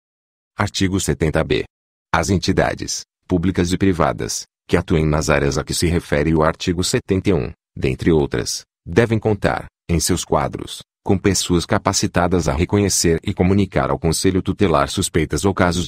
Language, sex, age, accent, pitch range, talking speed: Portuguese, male, 40-59, Brazilian, 80-95 Hz, 145 wpm